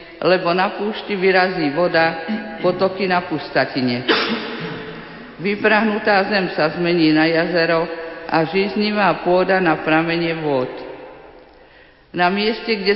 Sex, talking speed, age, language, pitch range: female, 105 wpm, 50-69, Slovak, 155-180 Hz